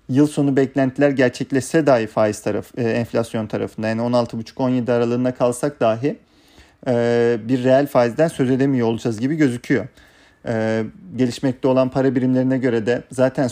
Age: 40-59